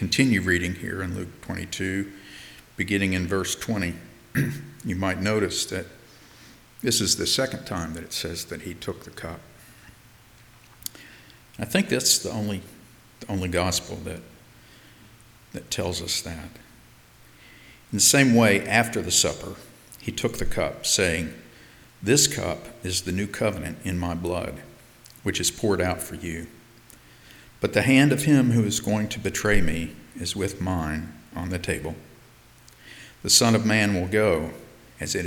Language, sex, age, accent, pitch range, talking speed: English, male, 50-69, American, 85-110 Hz, 155 wpm